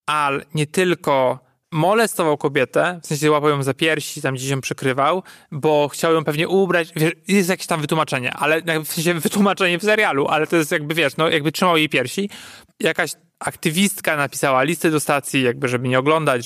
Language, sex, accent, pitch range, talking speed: Polish, male, native, 145-175 Hz, 190 wpm